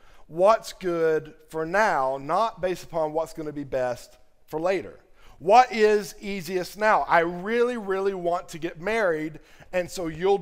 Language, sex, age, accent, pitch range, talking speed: English, male, 50-69, American, 160-225 Hz, 160 wpm